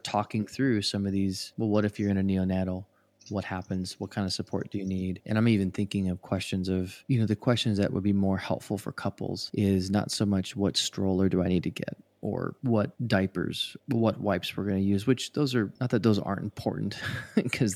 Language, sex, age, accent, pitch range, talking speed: English, male, 20-39, American, 95-105 Hz, 230 wpm